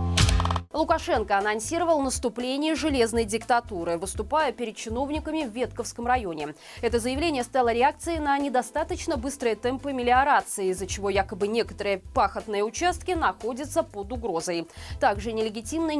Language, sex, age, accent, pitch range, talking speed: Russian, female, 20-39, native, 210-290 Hz, 115 wpm